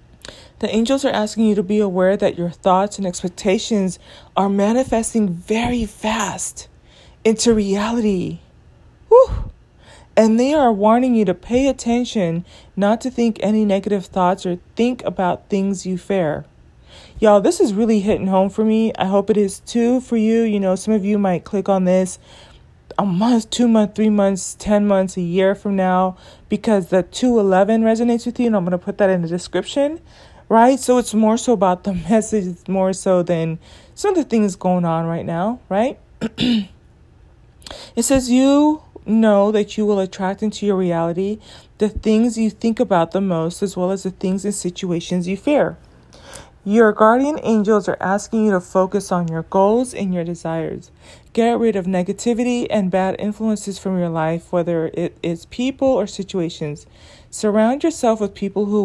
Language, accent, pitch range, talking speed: English, American, 185-225 Hz, 175 wpm